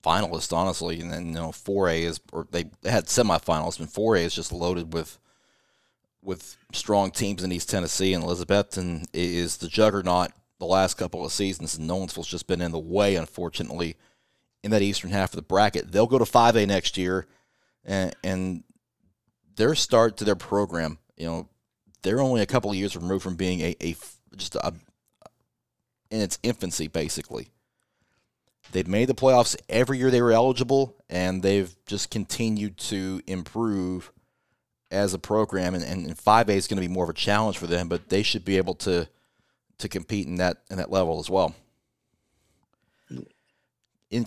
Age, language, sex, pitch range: 30-49, English, male, 90-110 Hz